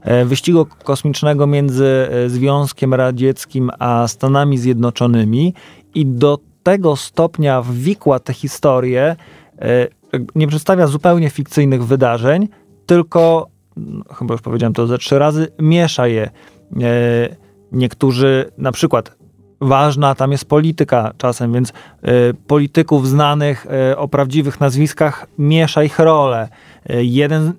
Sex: male